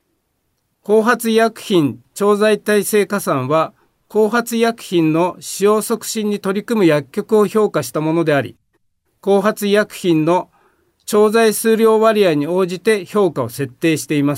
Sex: male